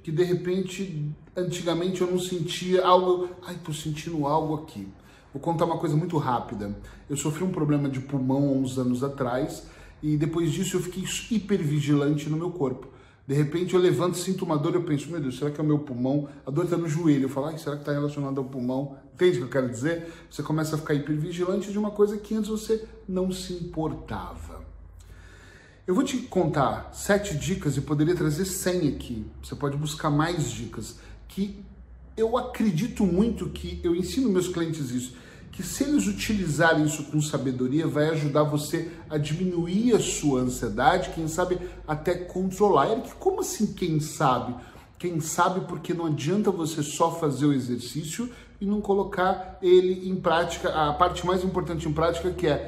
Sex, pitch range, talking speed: male, 145-180 Hz, 185 wpm